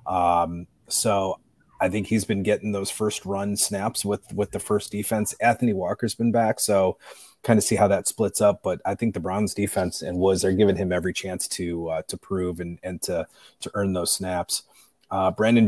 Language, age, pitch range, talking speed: English, 30-49, 90-105 Hz, 205 wpm